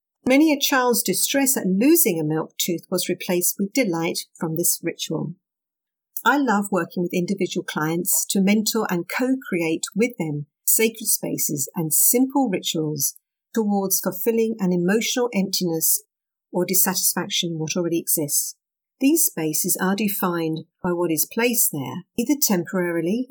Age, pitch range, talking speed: 50-69, 170-230 Hz, 140 wpm